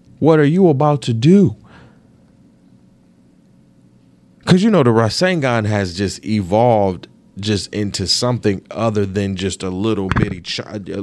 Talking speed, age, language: 130 wpm, 20-39, English